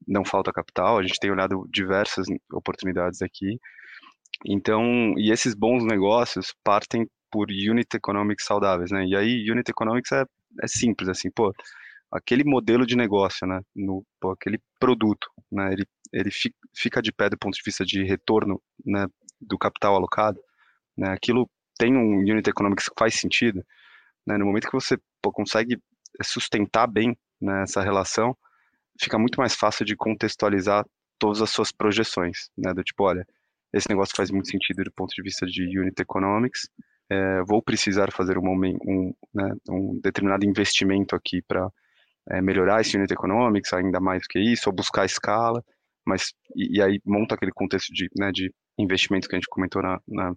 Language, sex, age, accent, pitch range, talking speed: Portuguese, male, 20-39, Brazilian, 95-110 Hz, 175 wpm